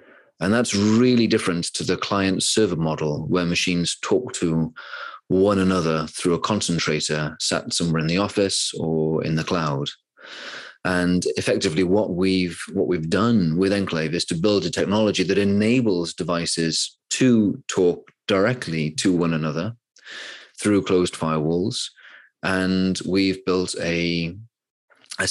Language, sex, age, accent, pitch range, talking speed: English, male, 30-49, British, 85-105 Hz, 135 wpm